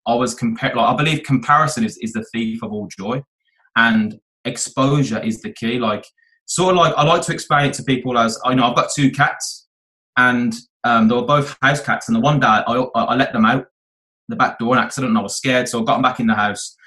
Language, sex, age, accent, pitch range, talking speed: English, male, 20-39, British, 120-150 Hz, 255 wpm